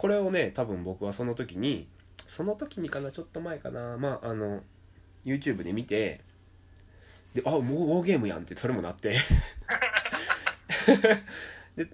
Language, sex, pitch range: Japanese, male, 90-125 Hz